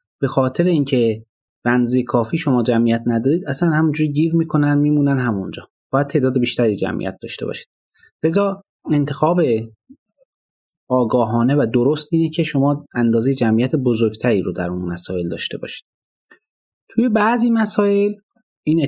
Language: Persian